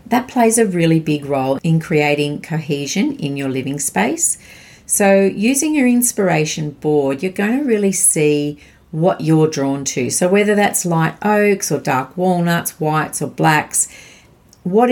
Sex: female